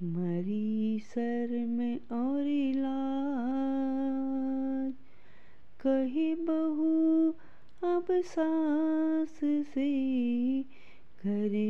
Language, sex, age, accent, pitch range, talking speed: Hindi, female, 20-39, native, 235-270 Hz, 55 wpm